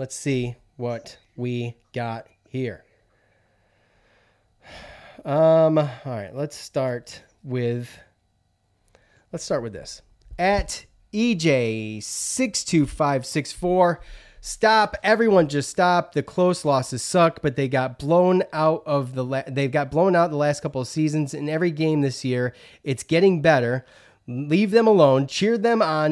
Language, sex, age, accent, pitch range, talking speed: English, male, 30-49, American, 120-160 Hz, 140 wpm